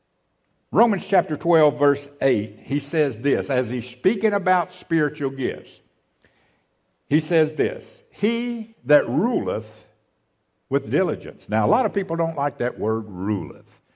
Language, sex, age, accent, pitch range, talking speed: English, male, 60-79, American, 125-185 Hz, 140 wpm